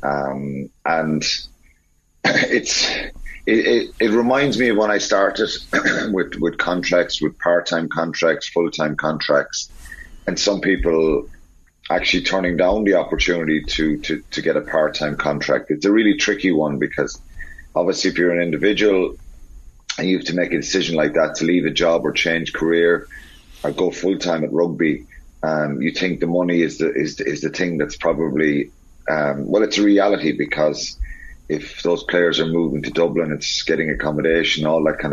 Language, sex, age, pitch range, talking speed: English, male, 30-49, 75-90 Hz, 170 wpm